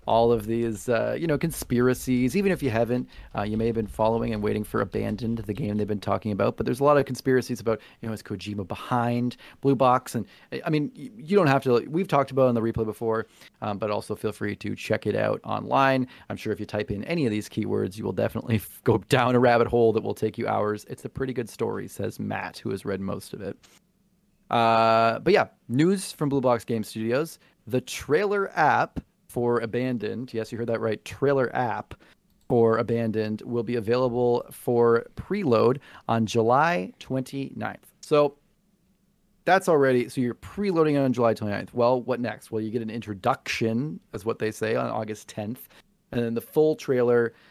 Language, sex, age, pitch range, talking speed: English, male, 30-49, 110-130 Hz, 205 wpm